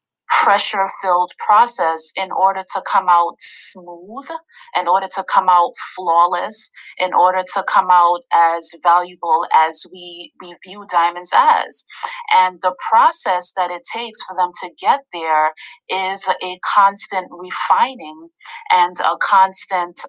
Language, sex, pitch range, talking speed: English, female, 170-200 Hz, 135 wpm